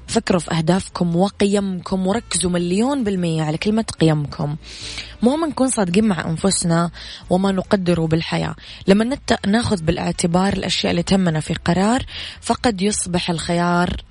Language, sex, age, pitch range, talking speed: Arabic, female, 20-39, 165-200 Hz, 125 wpm